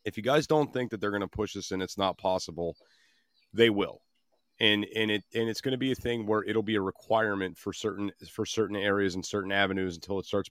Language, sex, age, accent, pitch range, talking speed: English, male, 40-59, American, 100-120 Hz, 245 wpm